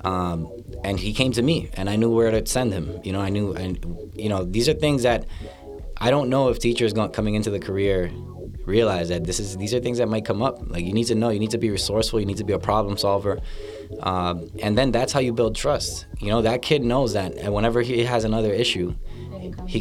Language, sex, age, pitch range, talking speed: English, male, 20-39, 90-115 Hz, 250 wpm